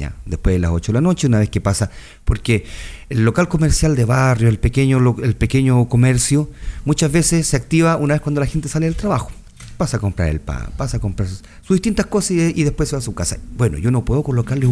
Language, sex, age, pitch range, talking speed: Spanish, male, 40-59, 100-130 Hz, 240 wpm